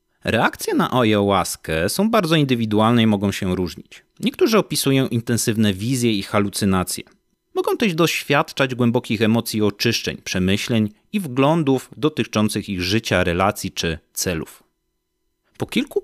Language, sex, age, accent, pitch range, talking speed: Polish, male, 30-49, native, 105-140 Hz, 125 wpm